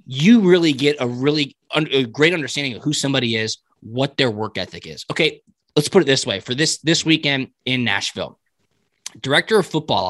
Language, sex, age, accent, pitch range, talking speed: English, male, 20-39, American, 120-150 Hz, 185 wpm